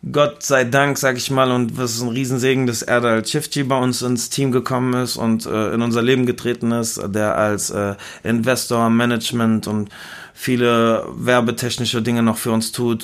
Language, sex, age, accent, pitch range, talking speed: German, male, 30-49, German, 120-135 Hz, 185 wpm